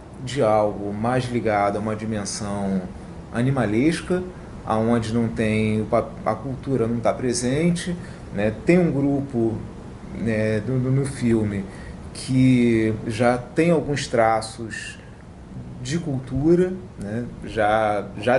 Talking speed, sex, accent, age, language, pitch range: 115 wpm, male, Brazilian, 30-49, Portuguese, 110-145 Hz